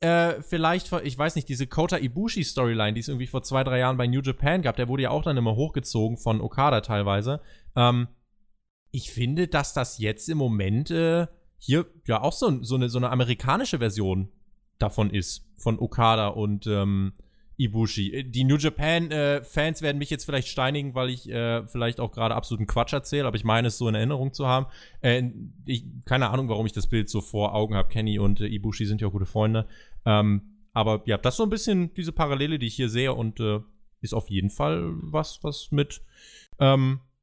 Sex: male